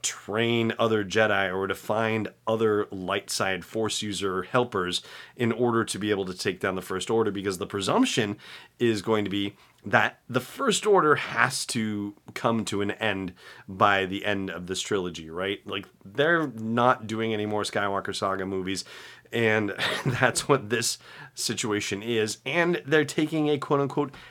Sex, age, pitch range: male, 30-49, 95-115 Hz